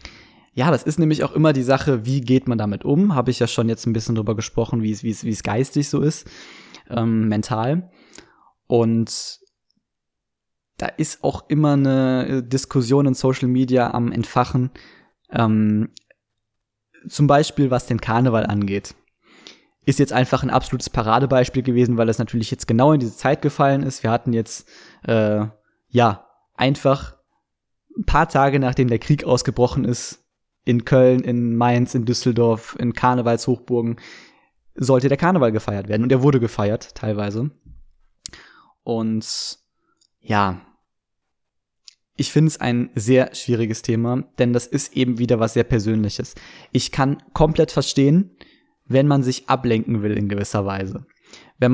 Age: 20-39